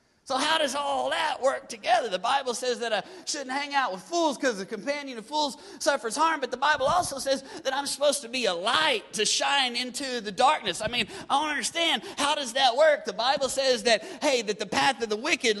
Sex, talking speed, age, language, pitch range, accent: male, 235 wpm, 30-49, English, 225-280 Hz, American